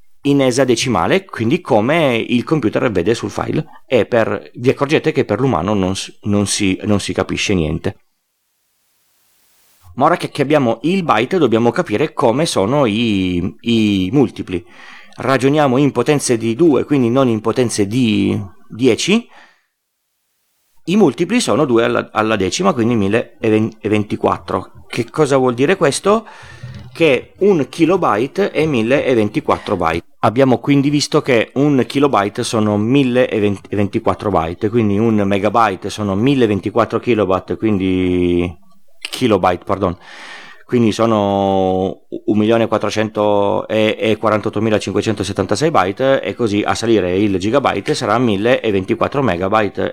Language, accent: Italian, native